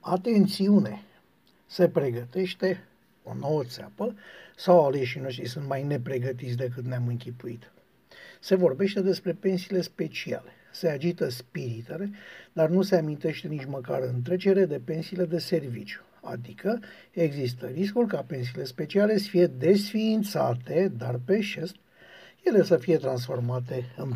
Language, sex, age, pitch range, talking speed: Romanian, male, 60-79, 130-195 Hz, 125 wpm